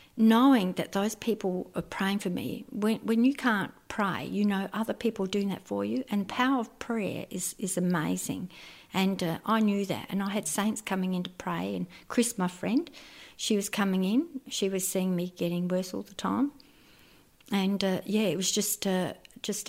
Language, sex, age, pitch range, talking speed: English, female, 50-69, 180-210 Hz, 205 wpm